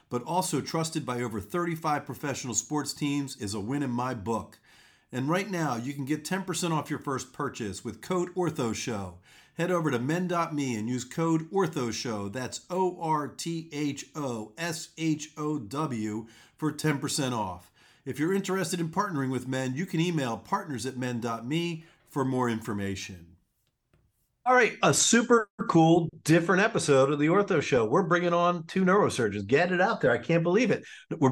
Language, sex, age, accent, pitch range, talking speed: English, male, 40-59, American, 125-170 Hz, 160 wpm